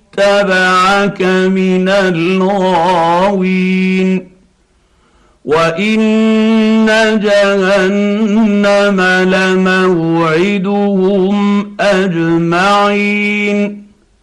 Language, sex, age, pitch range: Arabic, male, 50-69, 130-205 Hz